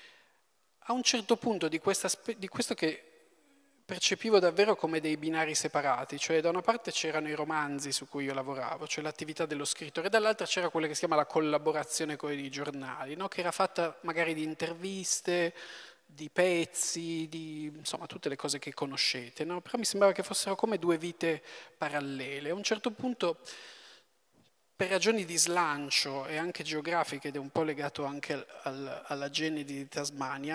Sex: male